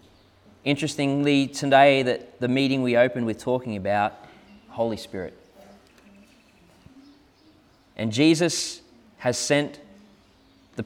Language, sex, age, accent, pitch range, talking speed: English, male, 20-39, Australian, 115-145 Hz, 95 wpm